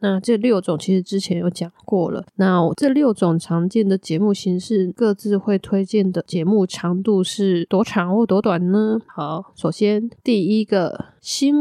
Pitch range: 175-200 Hz